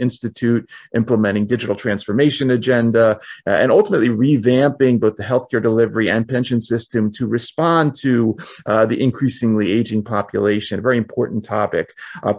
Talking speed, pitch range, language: 140 wpm, 110-125 Hz, English